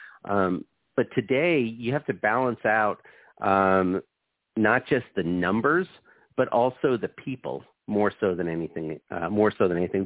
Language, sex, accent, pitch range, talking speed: English, male, American, 90-110 Hz, 155 wpm